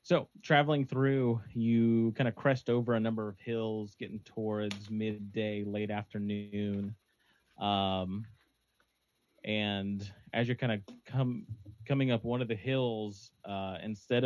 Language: English